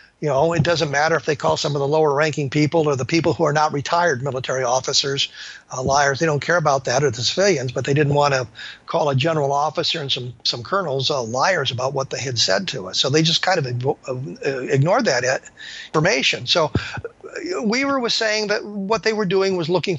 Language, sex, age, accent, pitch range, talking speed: English, male, 50-69, American, 140-175 Hz, 220 wpm